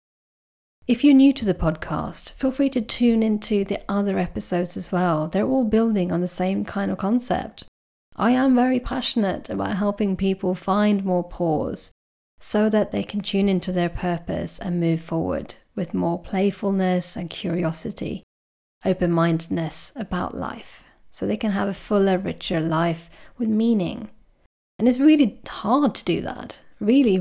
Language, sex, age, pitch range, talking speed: English, female, 30-49, 170-205 Hz, 160 wpm